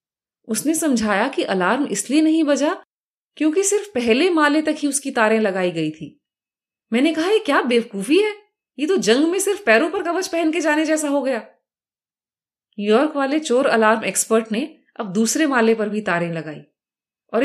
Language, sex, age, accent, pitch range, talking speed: Hindi, female, 30-49, native, 205-300 Hz, 180 wpm